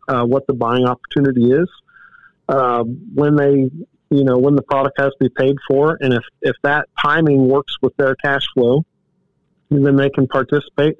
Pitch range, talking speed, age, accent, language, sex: 125-150 Hz, 185 wpm, 50-69, American, English, male